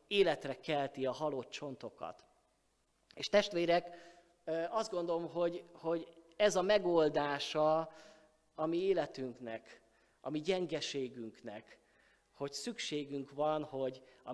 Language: Hungarian